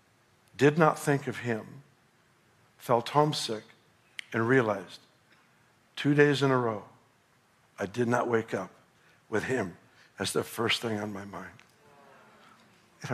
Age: 60-79